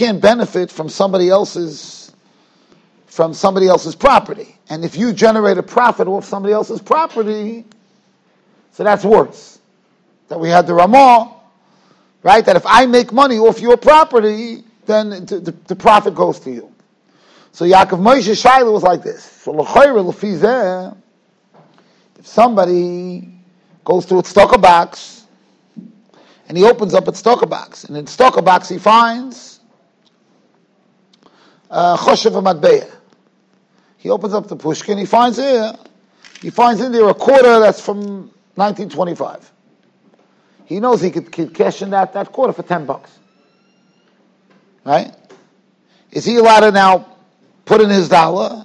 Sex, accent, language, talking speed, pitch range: male, American, English, 140 wpm, 185-230 Hz